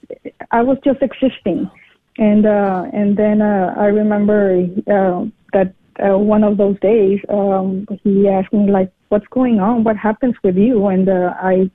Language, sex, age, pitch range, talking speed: English, female, 20-39, 190-210 Hz, 170 wpm